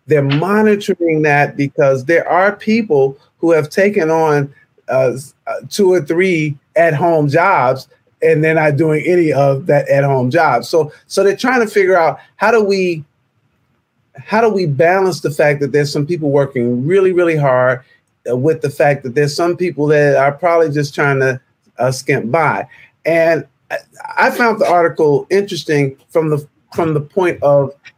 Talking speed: 170 wpm